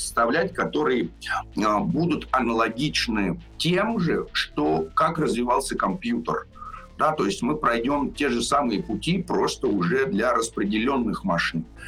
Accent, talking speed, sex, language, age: native, 115 wpm, male, Russian, 50-69